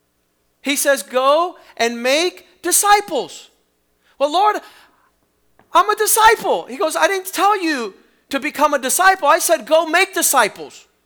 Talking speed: 140 wpm